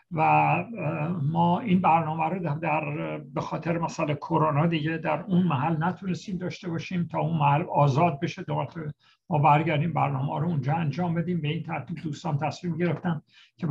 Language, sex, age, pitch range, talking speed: Persian, male, 60-79, 150-175 Hz, 160 wpm